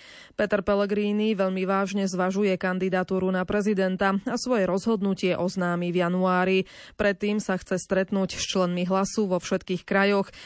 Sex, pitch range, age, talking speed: female, 185-215 Hz, 20-39, 140 wpm